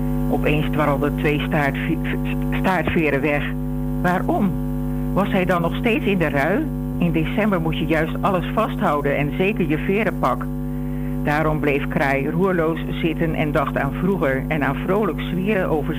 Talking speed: 150 wpm